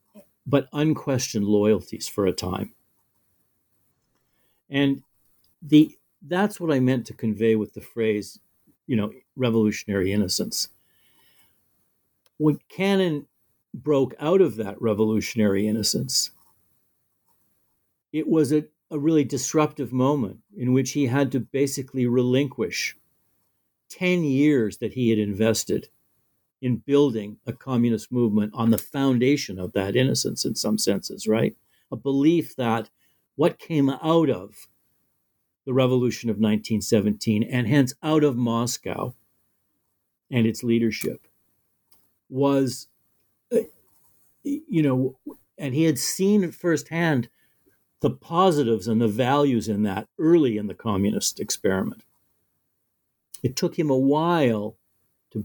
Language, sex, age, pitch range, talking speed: English, male, 60-79, 110-145 Hz, 120 wpm